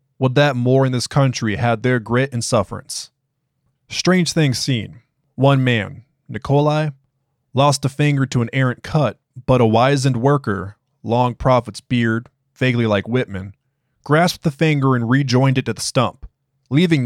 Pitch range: 115-140 Hz